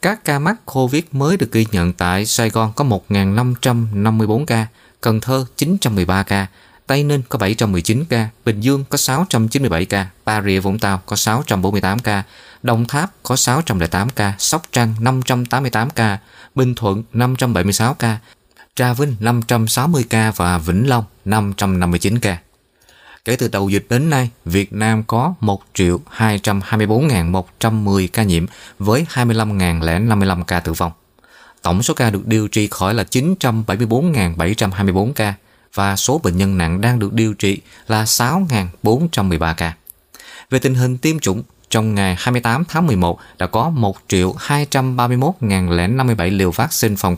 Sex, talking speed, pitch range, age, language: male, 145 wpm, 100-125 Hz, 20-39, Vietnamese